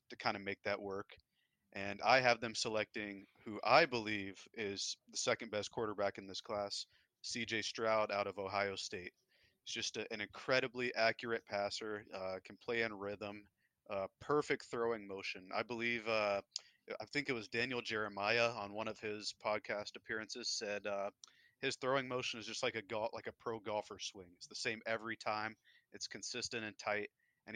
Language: English